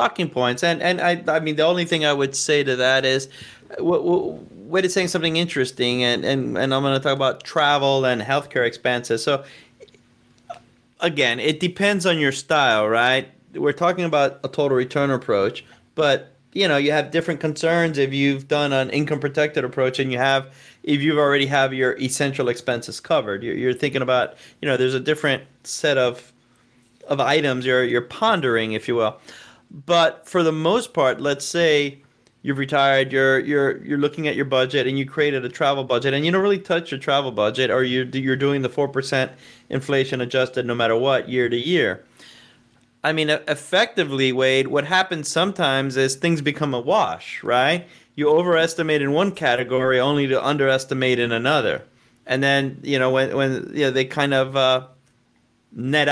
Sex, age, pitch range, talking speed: male, 30-49, 130-150 Hz, 185 wpm